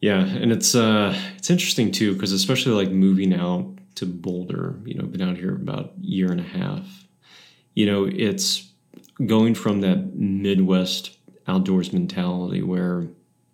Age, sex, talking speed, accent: 30-49, male, 155 wpm, American